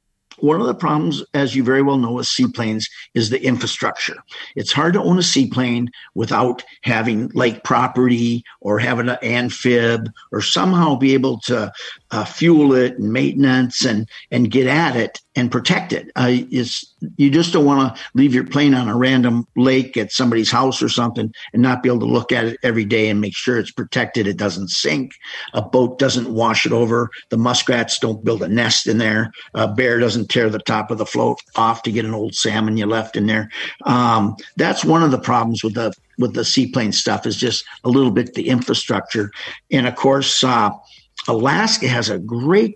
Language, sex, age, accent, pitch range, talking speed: English, male, 50-69, American, 115-140 Hz, 200 wpm